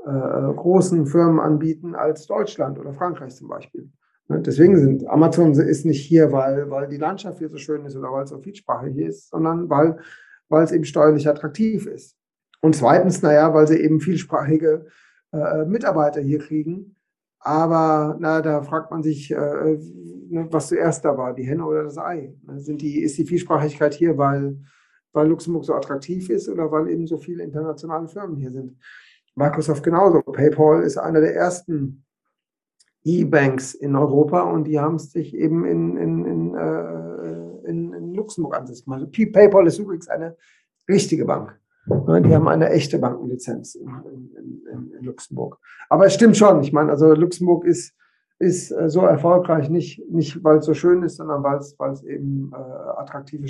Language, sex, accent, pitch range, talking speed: German, male, German, 140-165 Hz, 170 wpm